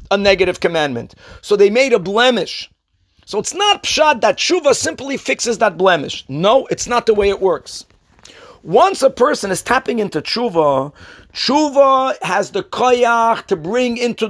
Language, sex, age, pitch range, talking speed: English, male, 50-69, 195-275 Hz, 165 wpm